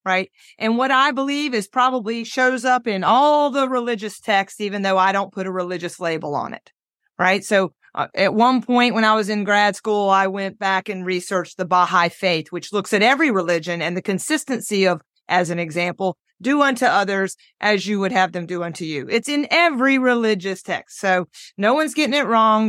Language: English